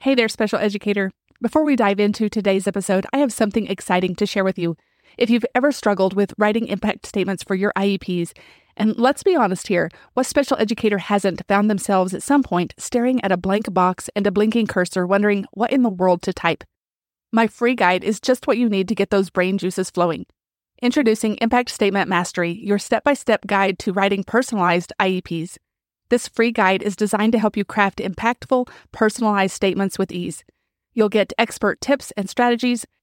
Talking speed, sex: 190 wpm, female